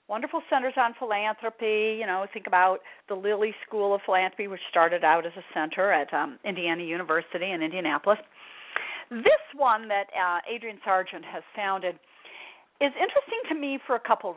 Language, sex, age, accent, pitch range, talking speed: English, female, 40-59, American, 200-295 Hz, 165 wpm